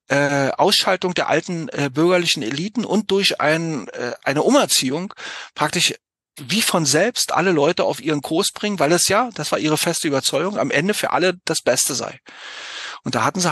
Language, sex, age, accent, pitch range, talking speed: German, male, 40-59, German, 145-185 Hz, 180 wpm